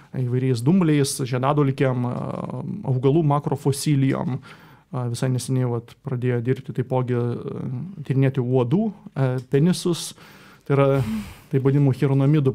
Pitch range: 130-150 Hz